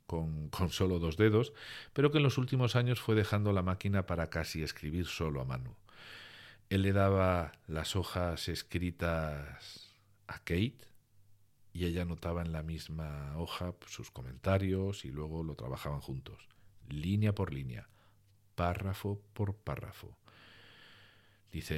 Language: Spanish